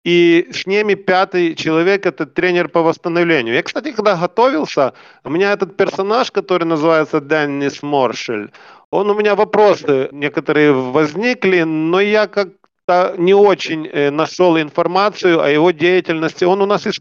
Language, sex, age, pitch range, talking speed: Russian, male, 40-59, 155-190 Hz, 150 wpm